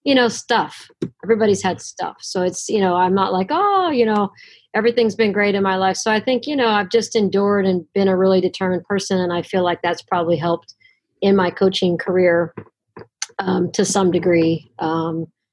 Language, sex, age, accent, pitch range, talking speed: English, female, 40-59, American, 170-205 Hz, 200 wpm